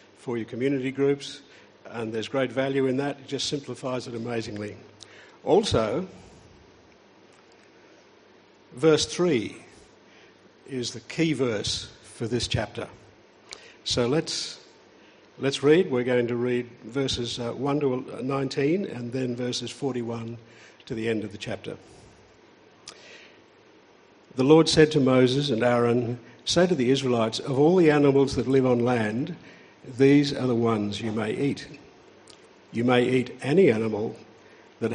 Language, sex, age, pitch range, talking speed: English, male, 50-69, 115-135 Hz, 135 wpm